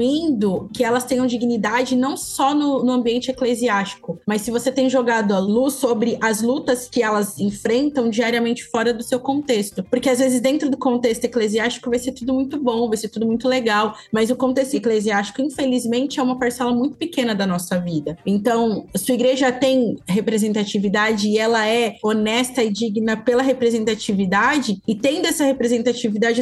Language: Portuguese